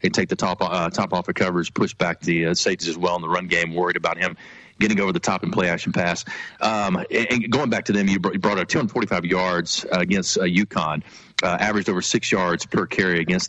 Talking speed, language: 235 wpm, English